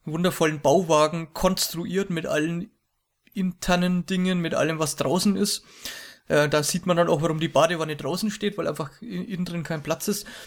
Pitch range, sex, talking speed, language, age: 165-195 Hz, male, 170 wpm, English, 20-39